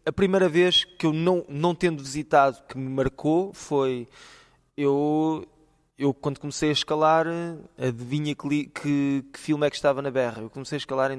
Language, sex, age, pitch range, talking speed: Portuguese, male, 20-39, 135-165 Hz, 190 wpm